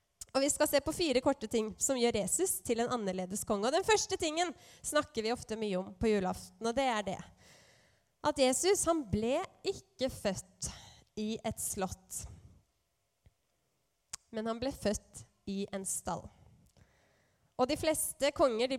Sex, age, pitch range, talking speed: female, 20-39, 225-305 Hz, 160 wpm